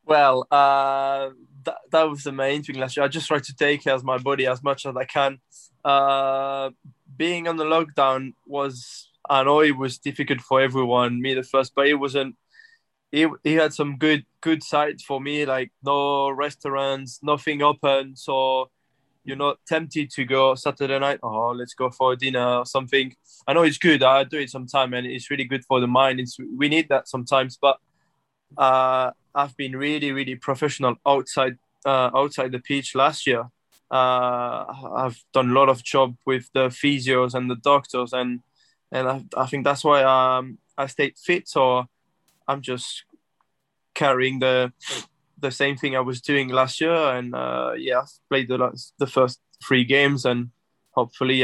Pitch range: 130-145 Hz